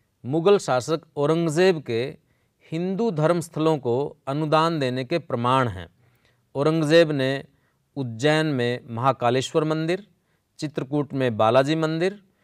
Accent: native